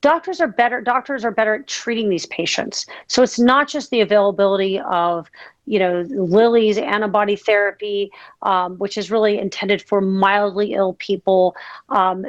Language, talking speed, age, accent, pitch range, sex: English, 155 wpm, 40-59, American, 190-230 Hz, female